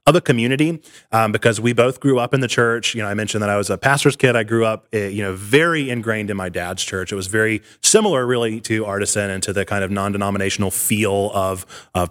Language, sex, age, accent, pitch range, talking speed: English, male, 30-49, American, 100-125 Hz, 245 wpm